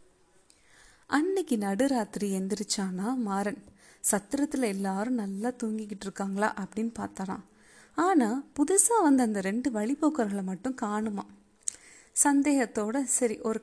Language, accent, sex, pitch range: Tamil, native, female, 200-265 Hz